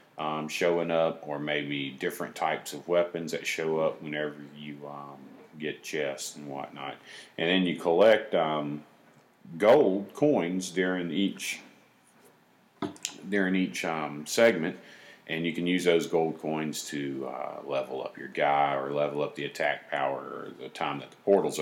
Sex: male